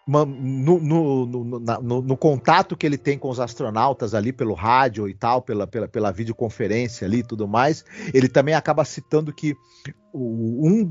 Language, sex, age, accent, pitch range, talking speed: Portuguese, male, 40-59, Brazilian, 125-160 Hz, 160 wpm